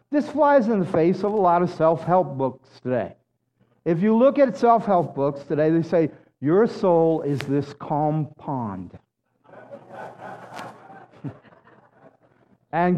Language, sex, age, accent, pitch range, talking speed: English, male, 50-69, American, 160-260 Hz, 130 wpm